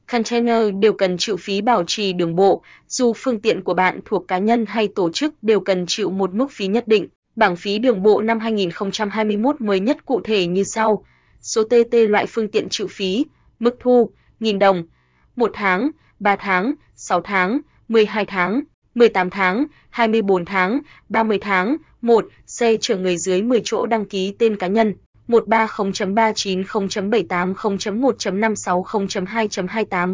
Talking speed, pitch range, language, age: 170 wpm, 190-230 Hz, Vietnamese, 20-39